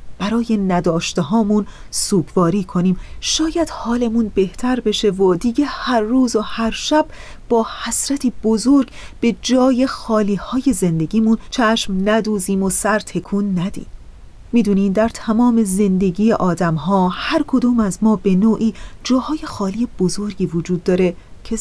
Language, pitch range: Persian, 185-235 Hz